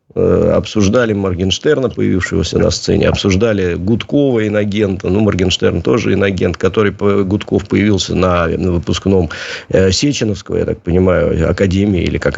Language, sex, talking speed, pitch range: Russian, male, 115 wpm, 95-120 Hz